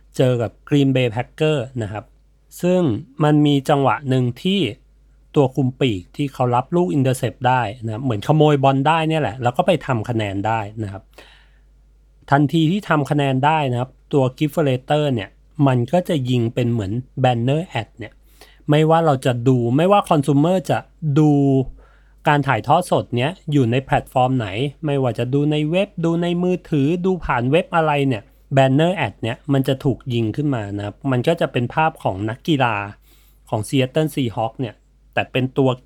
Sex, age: male, 30-49